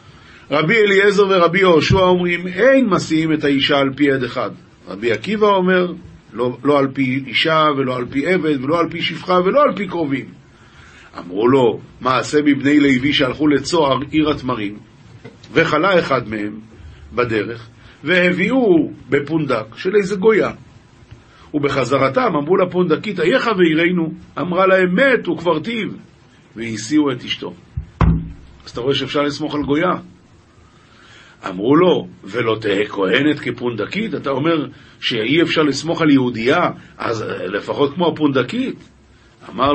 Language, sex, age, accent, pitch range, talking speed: Hebrew, male, 50-69, native, 130-180 Hz, 135 wpm